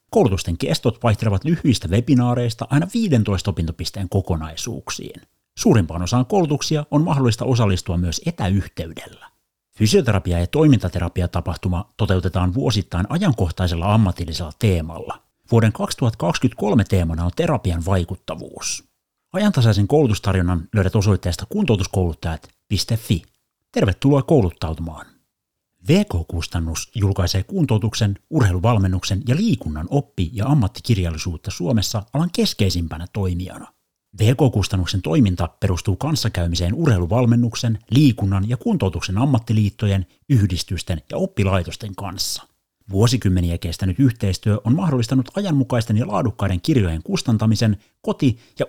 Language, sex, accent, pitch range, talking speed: Finnish, male, native, 90-120 Hz, 95 wpm